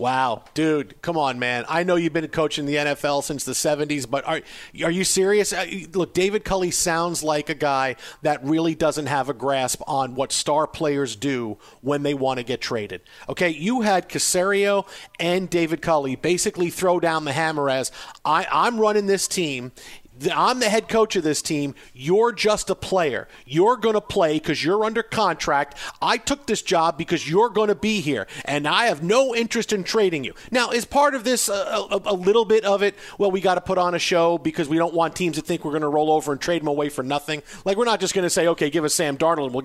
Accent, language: American, English